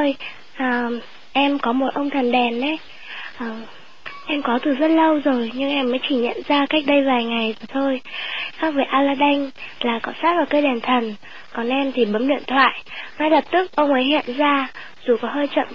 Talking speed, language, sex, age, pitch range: 200 wpm, Vietnamese, female, 10-29, 240-285 Hz